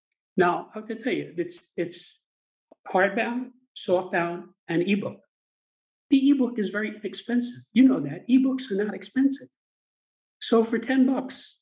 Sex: male